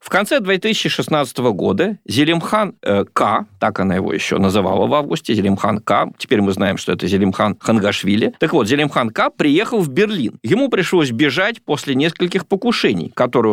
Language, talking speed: Russian, 165 wpm